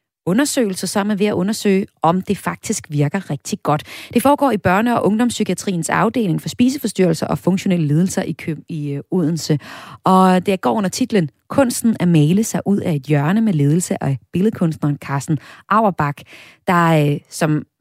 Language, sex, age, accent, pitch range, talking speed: Danish, female, 30-49, native, 155-220 Hz, 160 wpm